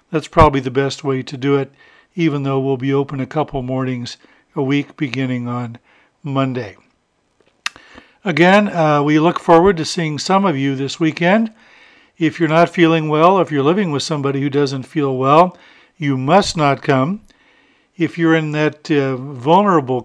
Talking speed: 170 wpm